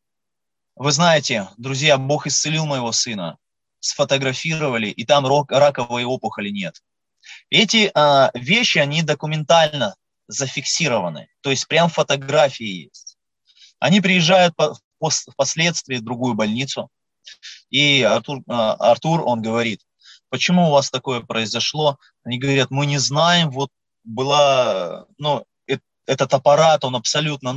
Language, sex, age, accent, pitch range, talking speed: Russian, male, 20-39, native, 125-160 Hz, 120 wpm